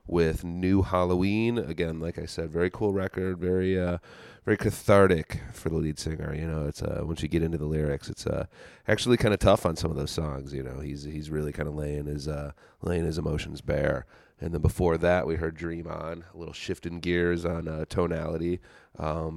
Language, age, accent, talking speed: English, 30-49, American, 215 wpm